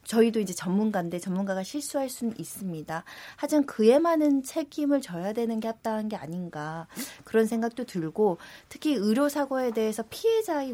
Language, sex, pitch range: Korean, female, 190-265 Hz